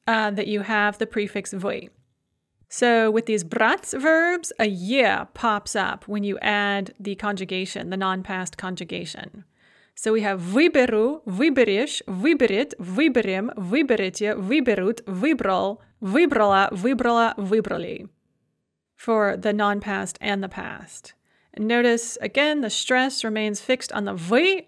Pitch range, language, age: 205-255 Hz, English, 30-49